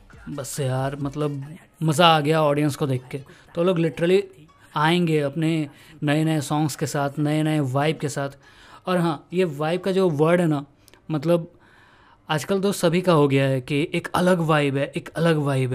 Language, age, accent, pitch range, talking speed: Hindi, 20-39, native, 145-175 Hz, 190 wpm